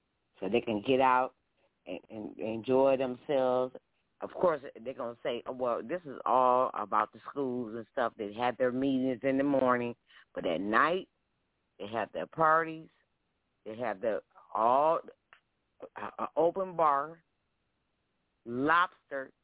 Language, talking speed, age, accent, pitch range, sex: English, 140 wpm, 40-59, American, 125-155 Hz, female